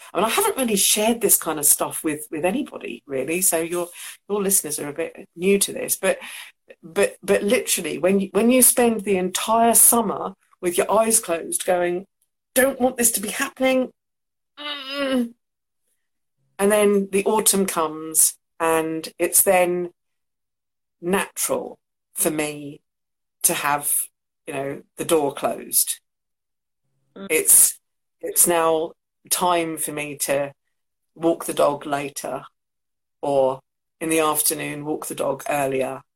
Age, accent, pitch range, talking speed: 50-69, British, 145-205 Hz, 140 wpm